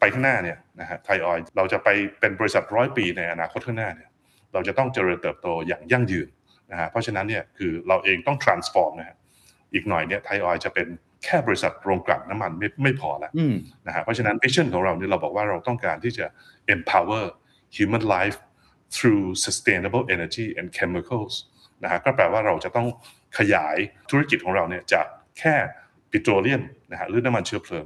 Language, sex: Thai, male